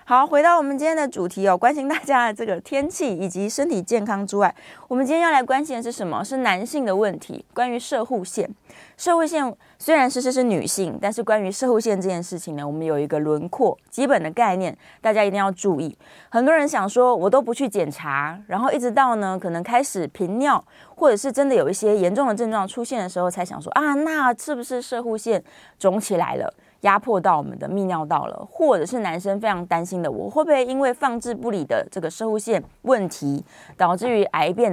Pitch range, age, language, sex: 180-260 Hz, 20-39, Chinese, female